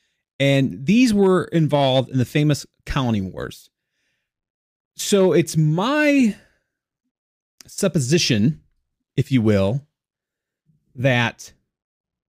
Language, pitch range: English, 120-160 Hz